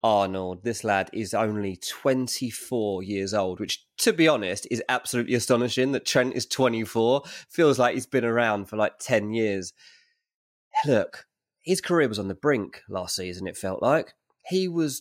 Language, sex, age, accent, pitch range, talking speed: English, male, 20-39, British, 100-140 Hz, 170 wpm